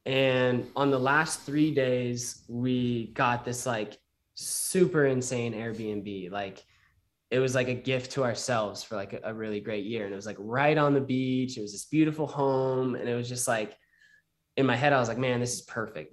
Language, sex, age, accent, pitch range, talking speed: English, male, 10-29, American, 110-130 Hz, 205 wpm